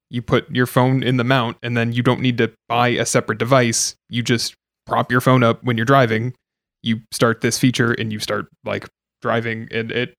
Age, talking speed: 20-39, 220 wpm